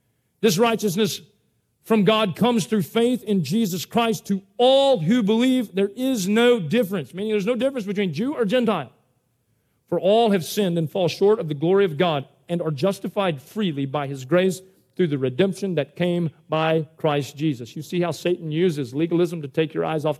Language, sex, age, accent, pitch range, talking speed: English, male, 40-59, American, 150-200 Hz, 190 wpm